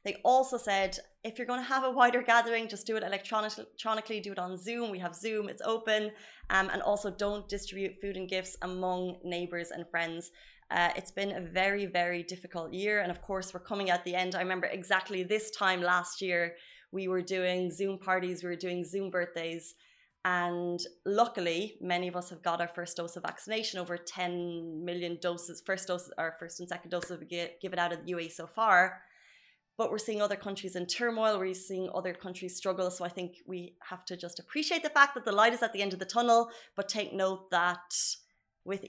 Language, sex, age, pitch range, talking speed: Arabic, female, 20-39, 175-210 Hz, 210 wpm